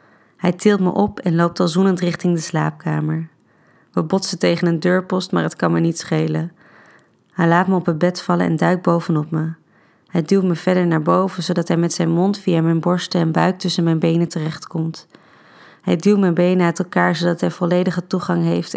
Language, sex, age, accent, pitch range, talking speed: Dutch, female, 20-39, Dutch, 165-185 Hz, 205 wpm